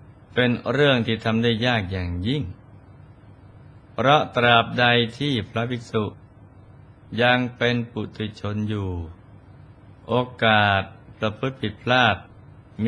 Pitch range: 100-125 Hz